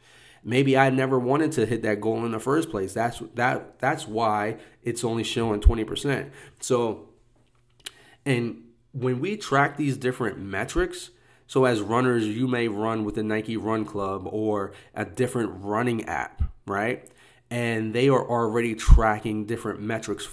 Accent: American